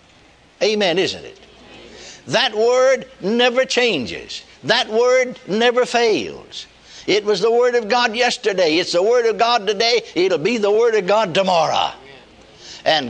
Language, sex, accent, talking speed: English, male, American, 145 wpm